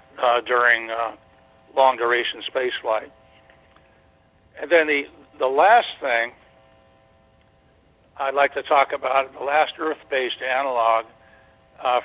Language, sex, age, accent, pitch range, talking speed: English, male, 60-79, American, 100-135 Hz, 105 wpm